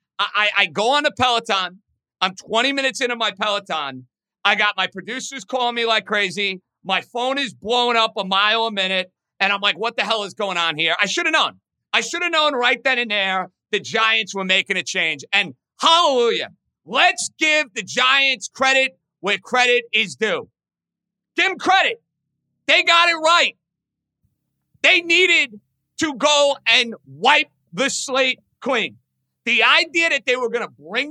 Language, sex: English, male